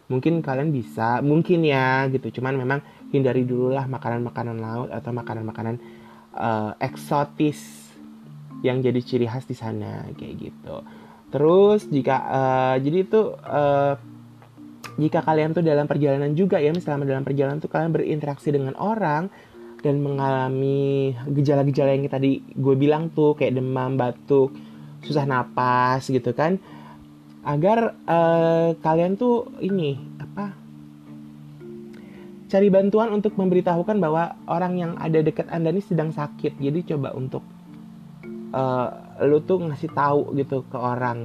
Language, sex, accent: Indonesian, male, native